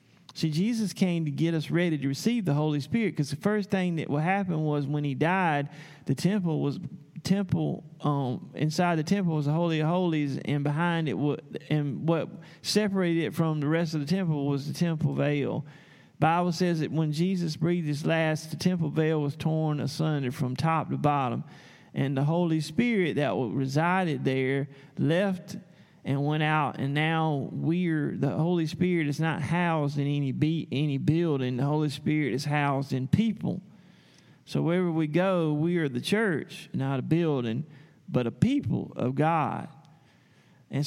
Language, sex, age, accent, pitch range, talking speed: English, male, 40-59, American, 150-180 Hz, 180 wpm